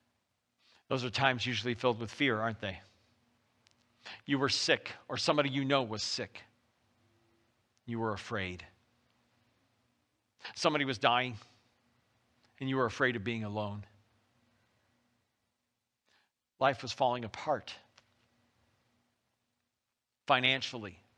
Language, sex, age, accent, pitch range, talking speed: English, male, 50-69, American, 110-125 Hz, 100 wpm